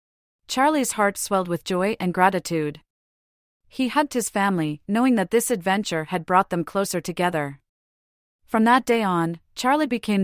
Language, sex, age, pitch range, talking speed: English, female, 40-59, 165-215 Hz, 150 wpm